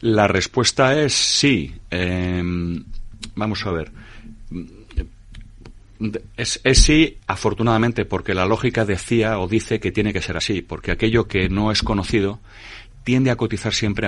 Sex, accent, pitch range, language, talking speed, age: male, Spanish, 90-105 Hz, Spanish, 140 wpm, 30-49